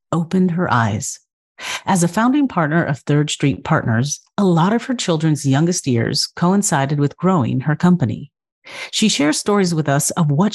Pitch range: 135-180 Hz